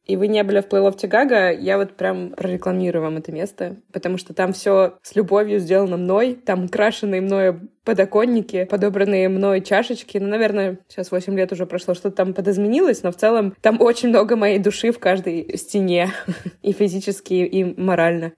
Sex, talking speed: female, 175 wpm